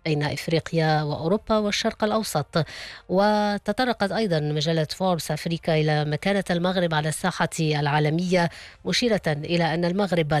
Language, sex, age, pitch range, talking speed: English, female, 20-39, 155-190 Hz, 115 wpm